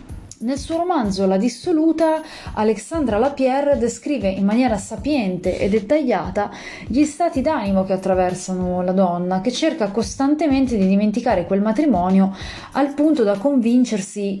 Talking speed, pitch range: 130 wpm, 190-245 Hz